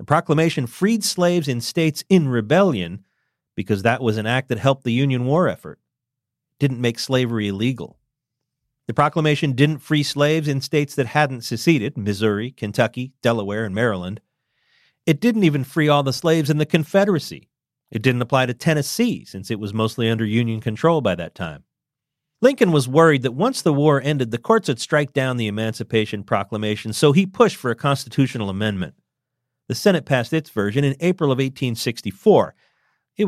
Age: 40-59